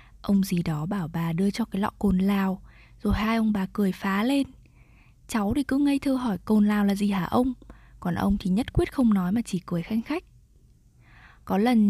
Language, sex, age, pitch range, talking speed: Vietnamese, female, 20-39, 190-225 Hz, 220 wpm